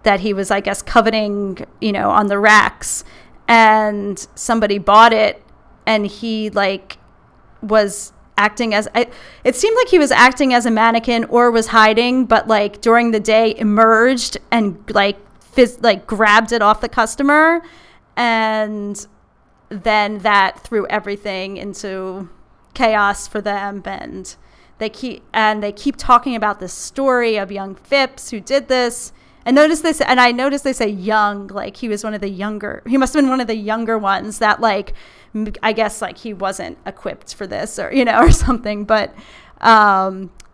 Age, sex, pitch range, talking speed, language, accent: 30-49, female, 200-230 Hz, 170 wpm, English, American